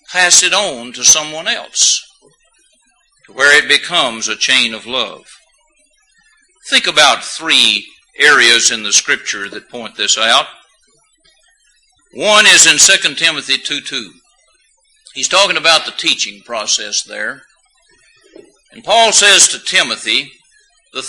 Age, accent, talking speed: 60-79, American, 125 wpm